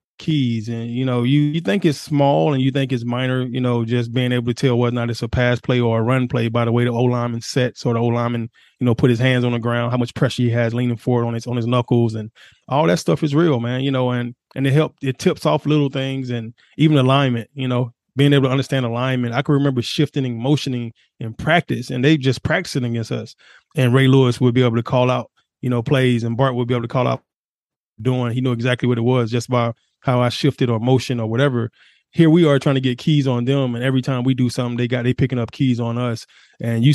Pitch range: 120-135 Hz